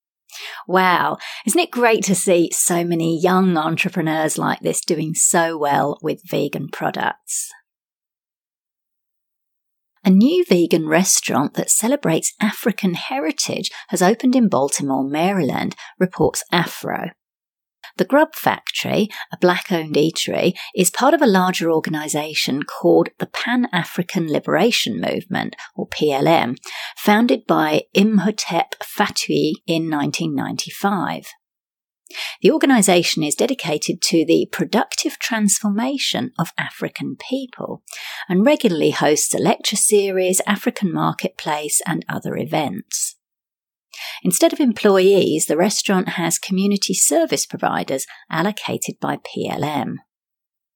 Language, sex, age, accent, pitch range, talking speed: English, female, 40-59, British, 165-225 Hz, 110 wpm